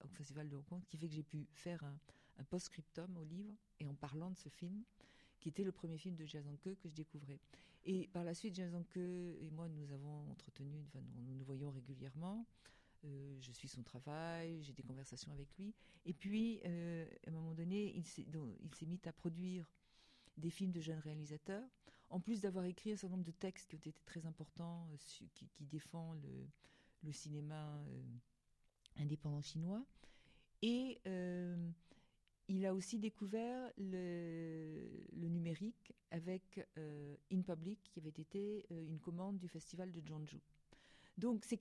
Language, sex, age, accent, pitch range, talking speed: French, female, 50-69, French, 155-190 Hz, 175 wpm